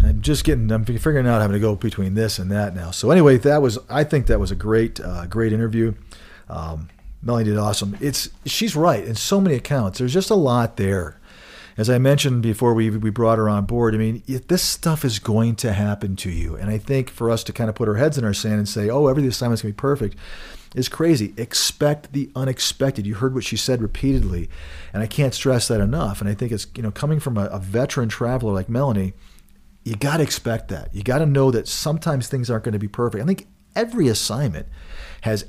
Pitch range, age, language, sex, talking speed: 105-130 Hz, 40-59, English, male, 230 wpm